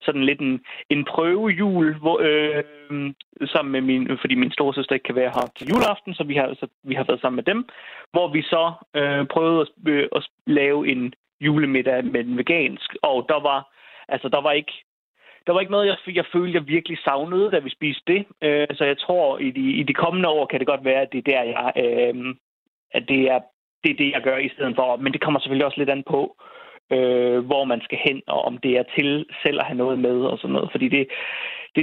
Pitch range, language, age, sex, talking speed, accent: 130-170 Hz, Danish, 30-49, male, 225 wpm, native